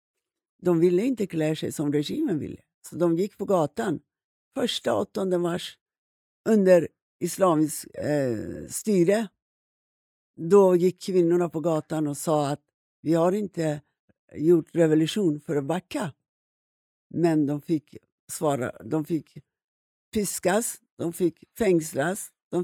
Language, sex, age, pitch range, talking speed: Swedish, female, 60-79, 155-195 Hz, 125 wpm